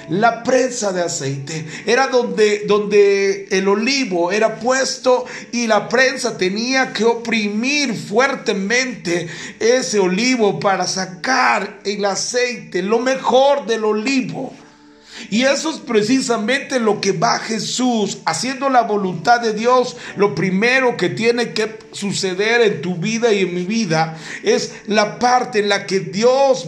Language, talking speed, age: Spanish, 135 wpm, 40-59